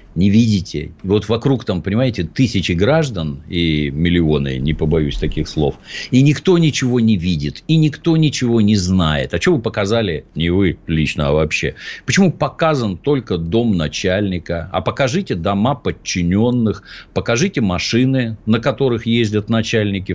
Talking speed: 145 wpm